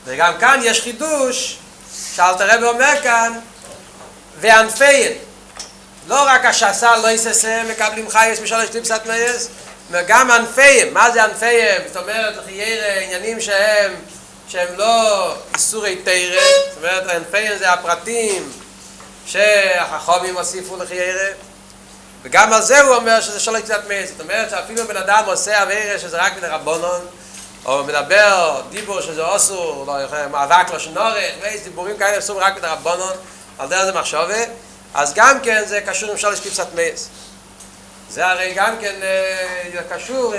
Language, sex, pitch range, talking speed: Hebrew, male, 180-225 Hz, 140 wpm